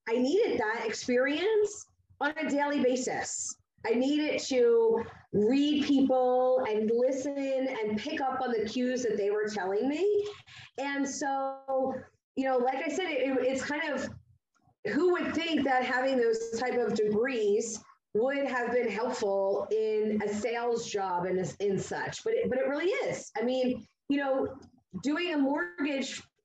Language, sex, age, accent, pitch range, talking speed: English, female, 30-49, American, 225-275 Hz, 155 wpm